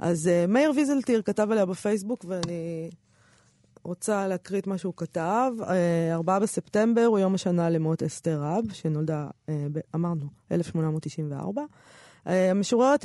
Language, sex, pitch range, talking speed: Hebrew, female, 165-200 Hz, 115 wpm